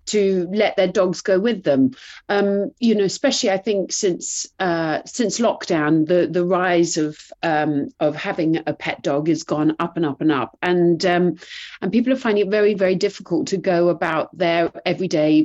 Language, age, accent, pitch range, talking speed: English, 40-59, British, 170-205 Hz, 190 wpm